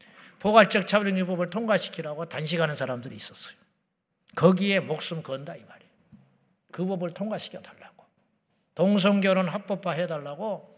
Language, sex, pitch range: Korean, male, 155-200 Hz